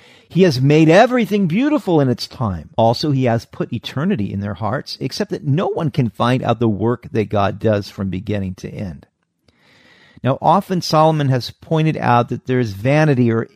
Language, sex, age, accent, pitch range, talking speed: English, male, 50-69, American, 120-165 Hz, 190 wpm